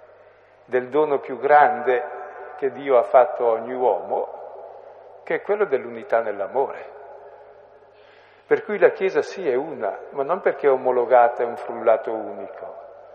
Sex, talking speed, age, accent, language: male, 145 wpm, 50-69, native, Italian